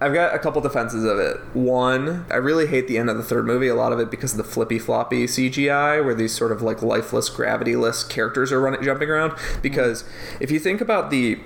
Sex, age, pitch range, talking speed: male, 20-39, 120-160 Hz, 235 wpm